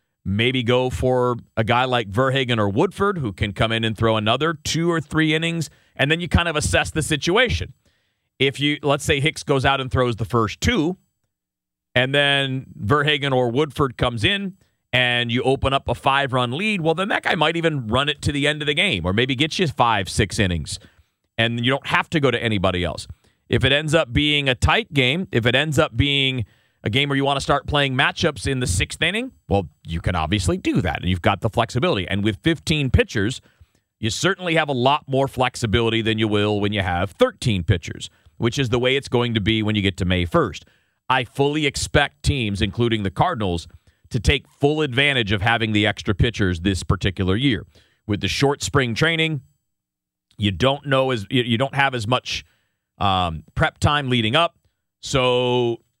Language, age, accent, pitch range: English, 40-59, American, 105-140 Hz